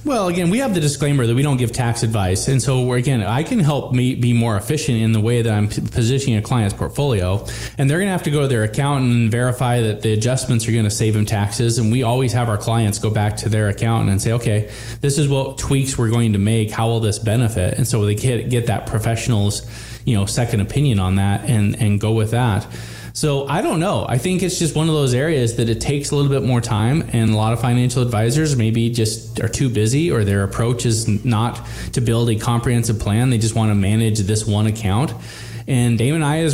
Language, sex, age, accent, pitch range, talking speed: English, male, 20-39, American, 110-135 Hz, 245 wpm